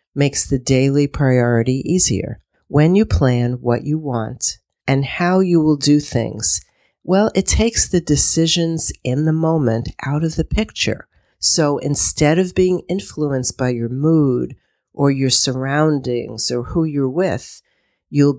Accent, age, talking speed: American, 50-69, 145 wpm